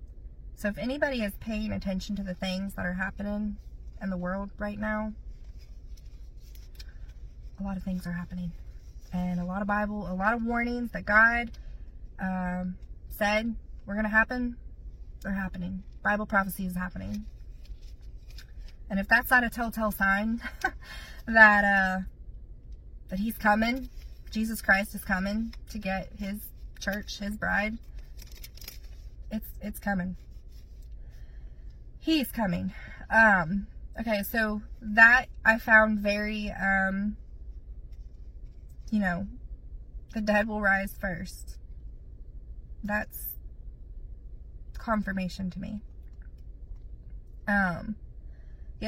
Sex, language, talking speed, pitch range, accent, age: female, English, 115 wpm, 180-220 Hz, American, 20-39